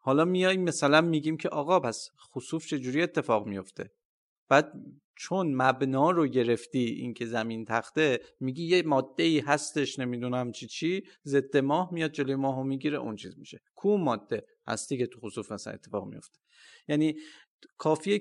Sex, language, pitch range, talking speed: male, Persian, 125-170 Hz, 160 wpm